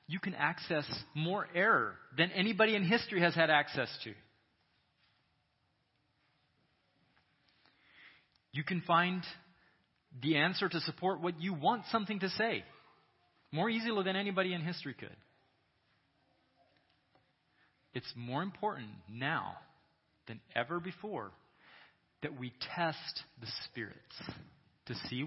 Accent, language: American, English